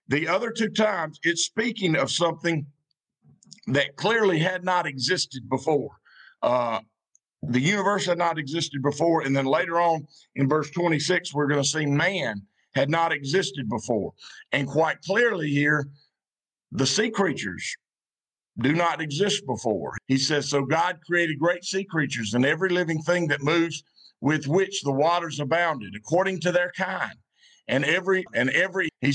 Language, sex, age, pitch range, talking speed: English, male, 50-69, 145-180 Hz, 155 wpm